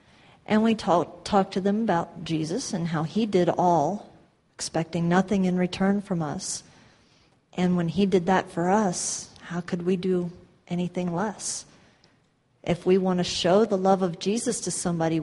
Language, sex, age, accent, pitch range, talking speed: English, female, 40-59, American, 165-195 Hz, 170 wpm